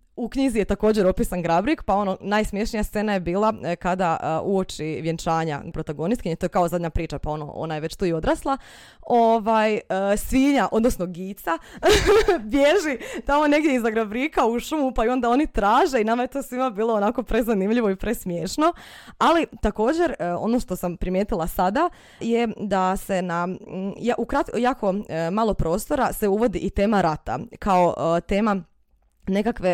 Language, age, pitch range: Croatian, 20-39, 175-235 Hz